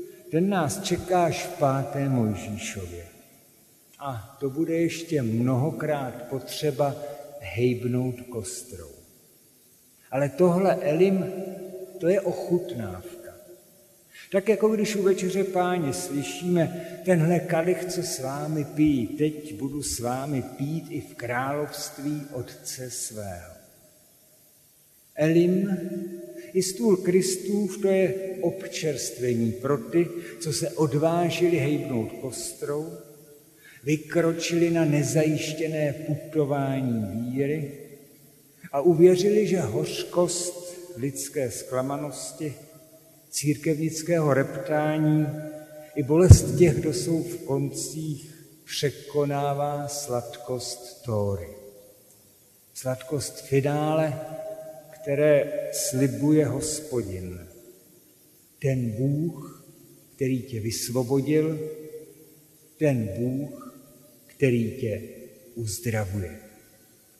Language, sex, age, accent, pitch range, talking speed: Czech, male, 50-69, native, 130-170 Hz, 85 wpm